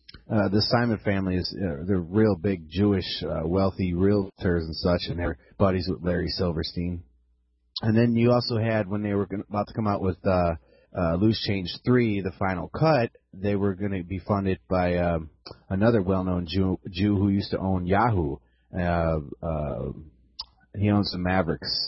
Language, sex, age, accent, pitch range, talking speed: English, male, 30-49, American, 85-110 Hz, 180 wpm